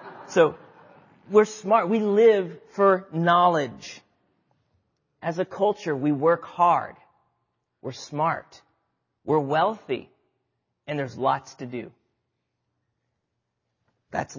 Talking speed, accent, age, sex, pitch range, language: 95 wpm, American, 40-59, male, 125-175 Hz, English